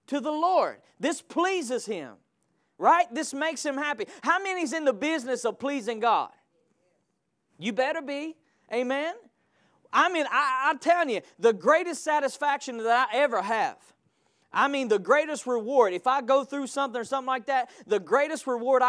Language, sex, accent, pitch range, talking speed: English, male, American, 230-285 Hz, 170 wpm